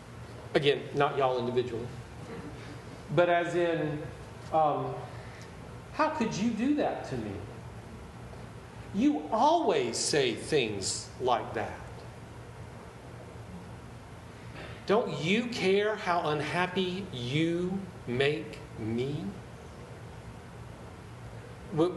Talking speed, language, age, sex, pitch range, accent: 80 wpm, English, 40-59, male, 120-170 Hz, American